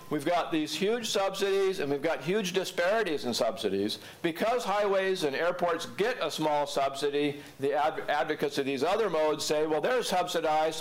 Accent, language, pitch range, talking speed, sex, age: American, English, 140-175 Hz, 165 wpm, male, 50-69